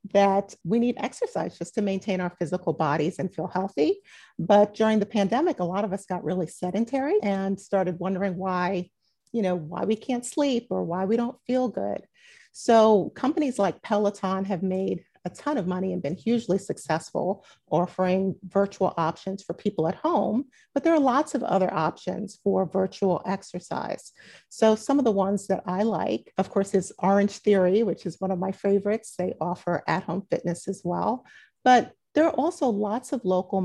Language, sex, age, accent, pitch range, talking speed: English, female, 40-59, American, 185-225 Hz, 185 wpm